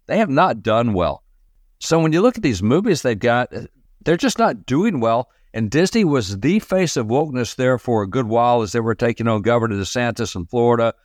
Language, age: English, 50-69